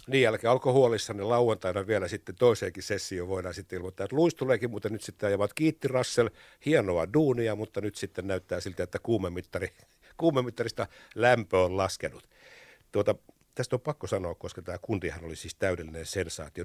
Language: Finnish